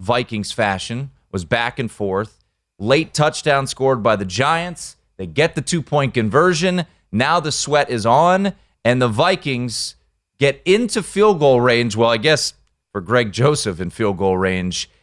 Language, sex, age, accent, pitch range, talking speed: English, male, 30-49, American, 105-170 Hz, 160 wpm